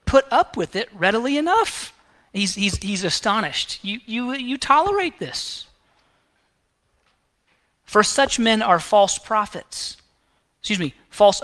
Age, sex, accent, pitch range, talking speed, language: 30-49, male, American, 160-225 Hz, 125 wpm, English